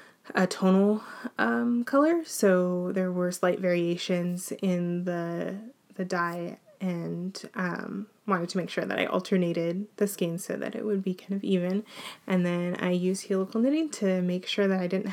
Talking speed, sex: 175 wpm, female